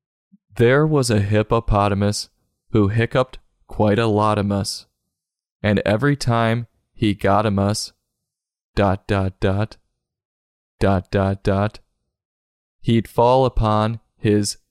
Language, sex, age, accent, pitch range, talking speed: English, male, 20-39, American, 95-125 Hz, 105 wpm